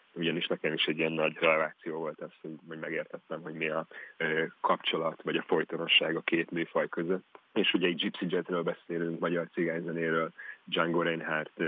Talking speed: 170 wpm